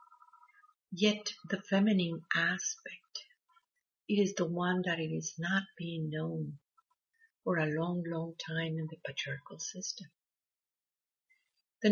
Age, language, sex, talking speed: 50-69, English, female, 115 wpm